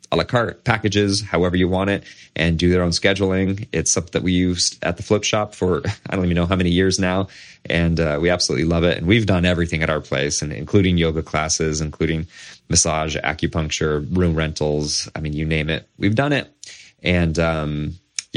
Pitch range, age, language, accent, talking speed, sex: 85-115 Hz, 30-49, English, American, 200 wpm, male